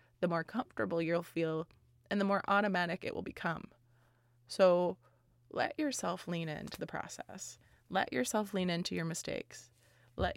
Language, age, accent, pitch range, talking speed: English, 20-39, American, 150-200 Hz, 150 wpm